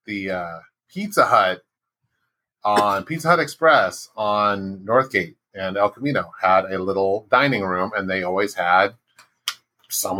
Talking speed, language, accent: 135 wpm, English, American